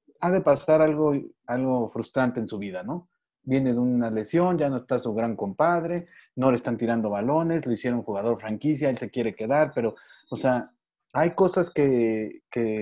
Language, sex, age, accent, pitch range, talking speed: Spanish, male, 40-59, Mexican, 115-160 Hz, 185 wpm